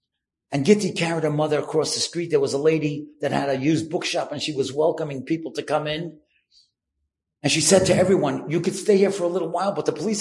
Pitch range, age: 155-245 Hz, 50-69